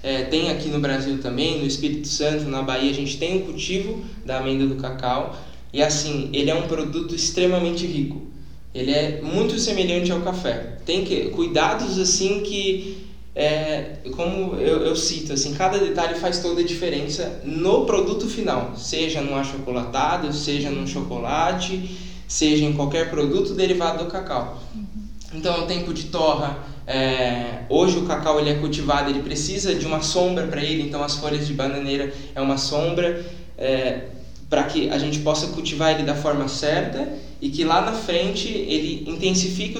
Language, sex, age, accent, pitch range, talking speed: Portuguese, male, 10-29, Brazilian, 140-180 Hz, 165 wpm